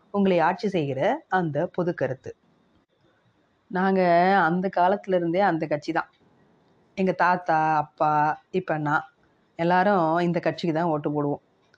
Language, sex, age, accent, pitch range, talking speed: Tamil, female, 30-49, native, 160-210 Hz, 110 wpm